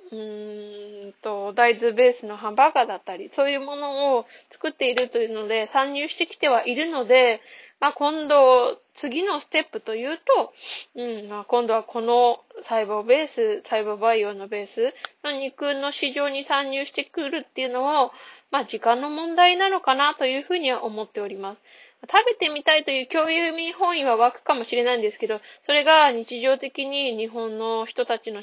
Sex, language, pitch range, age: female, Japanese, 225-295 Hz, 20-39